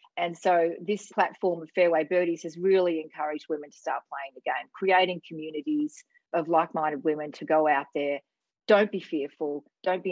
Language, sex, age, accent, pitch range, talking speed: English, female, 40-59, Australian, 160-210 Hz, 180 wpm